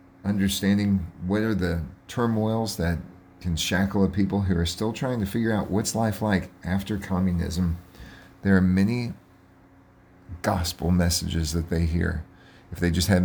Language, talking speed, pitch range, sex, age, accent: English, 155 wpm, 85-95 Hz, male, 40-59, American